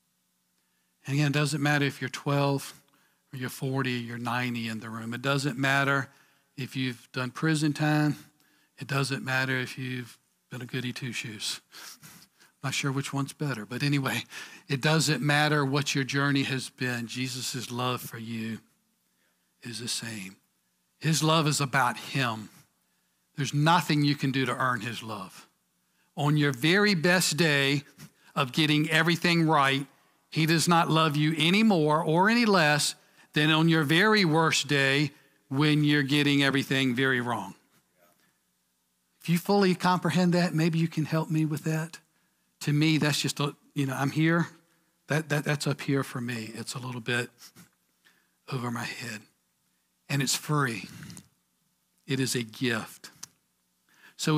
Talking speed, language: 160 wpm, English